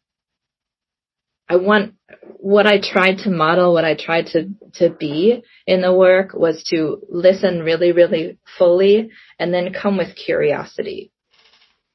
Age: 30-49